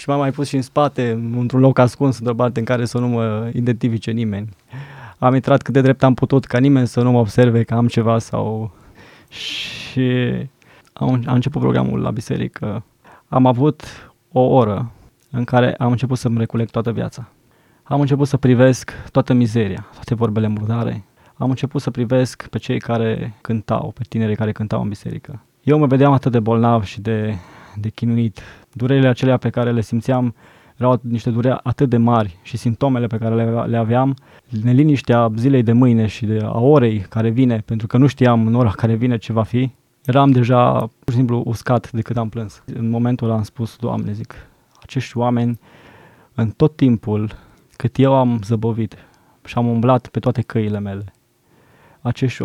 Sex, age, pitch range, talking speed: male, 20-39, 115-130 Hz, 185 wpm